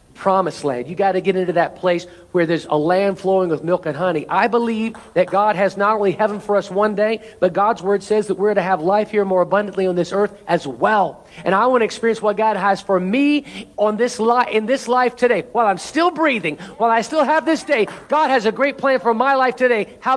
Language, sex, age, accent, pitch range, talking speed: English, male, 50-69, American, 195-280 Hz, 250 wpm